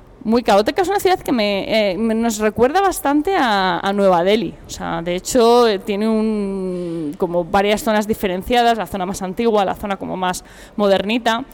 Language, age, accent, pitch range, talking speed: Spanish, 20-39, Spanish, 175-205 Hz, 180 wpm